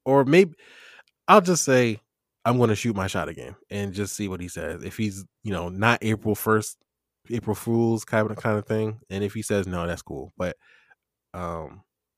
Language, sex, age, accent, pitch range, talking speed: English, male, 20-39, American, 100-125 Hz, 200 wpm